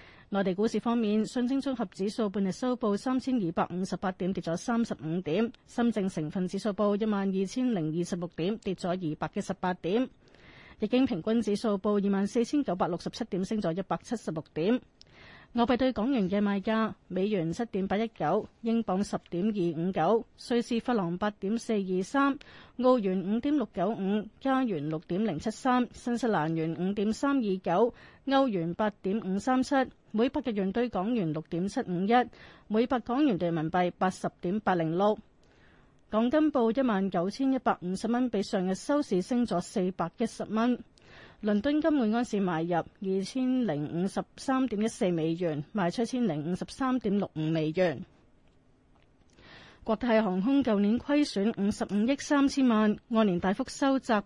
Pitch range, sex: 185-240 Hz, female